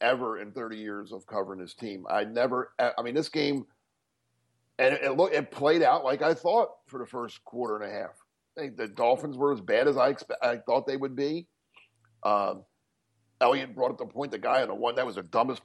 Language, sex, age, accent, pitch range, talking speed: English, male, 50-69, American, 120-160 Hz, 235 wpm